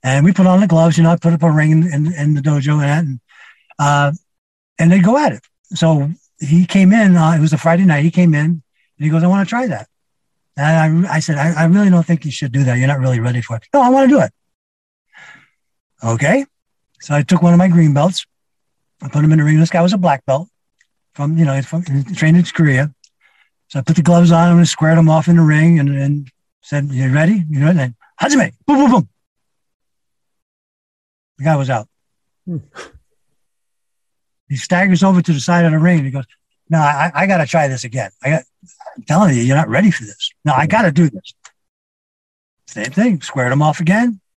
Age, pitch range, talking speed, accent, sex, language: 60-79, 140-175 Hz, 225 wpm, American, male, English